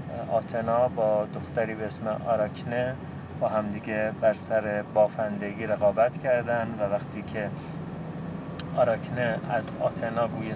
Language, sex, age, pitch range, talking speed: Persian, male, 30-49, 105-130 Hz, 115 wpm